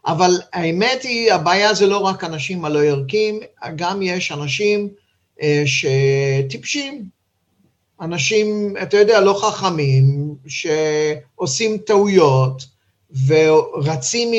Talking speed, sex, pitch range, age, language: 90 wpm, male, 140-200 Hz, 50-69, Hebrew